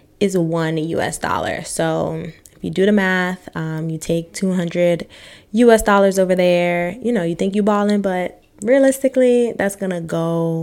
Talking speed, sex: 165 wpm, female